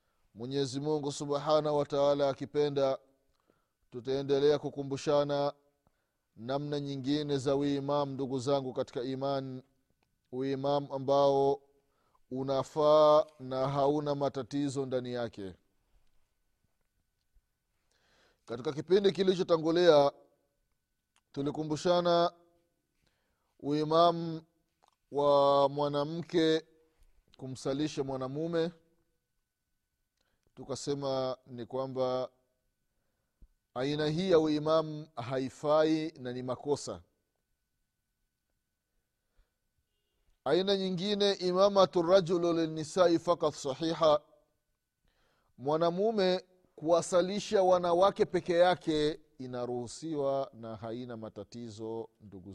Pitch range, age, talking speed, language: 130-160 Hz, 30-49, 70 wpm, Swahili